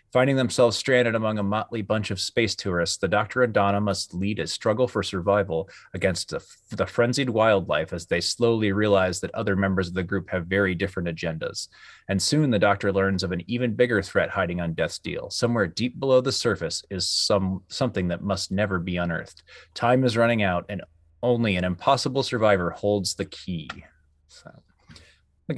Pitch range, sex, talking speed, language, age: 95-115 Hz, male, 190 wpm, English, 30-49